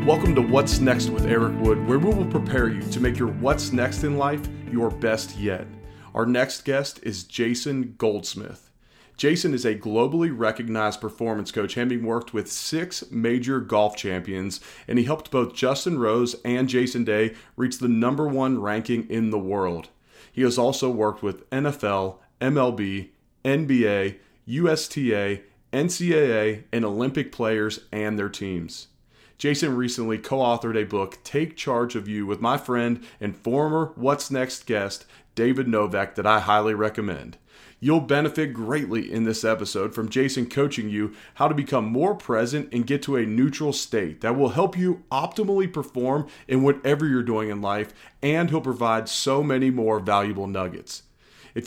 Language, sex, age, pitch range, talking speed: English, male, 30-49, 110-135 Hz, 165 wpm